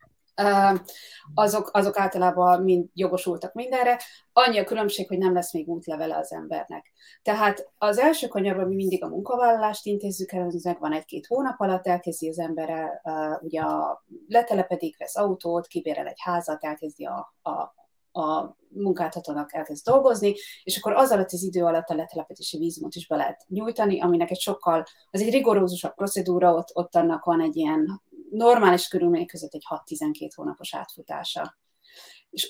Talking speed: 160 wpm